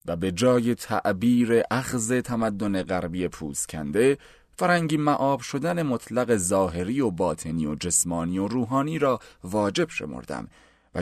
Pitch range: 95-130 Hz